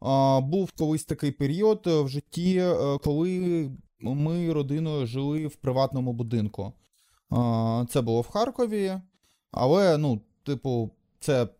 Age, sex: 20-39, male